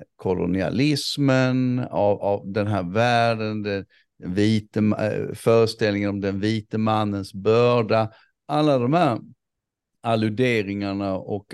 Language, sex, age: Swedish, male, 50-69